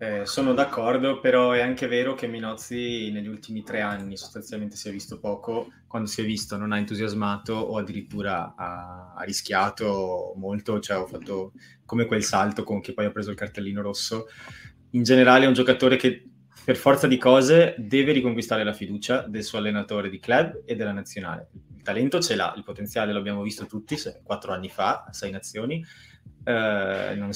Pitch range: 100-120 Hz